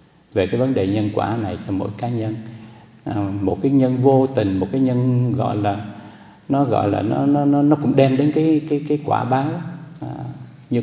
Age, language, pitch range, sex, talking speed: 60-79, Vietnamese, 110-150 Hz, male, 210 wpm